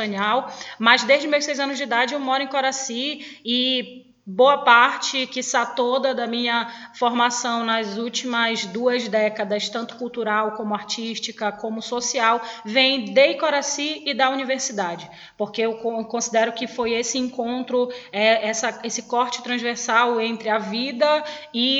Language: Portuguese